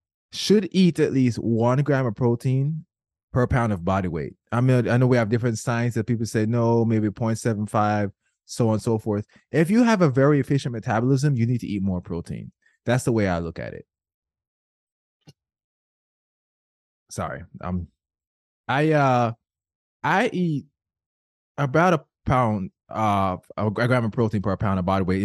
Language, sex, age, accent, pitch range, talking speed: English, male, 20-39, American, 100-130 Hz, 170 wpm